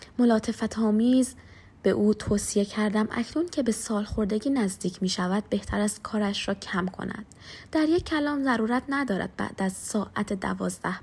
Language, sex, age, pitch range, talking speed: Persian, female, 20-39, 200-245 Hz, 145 wpm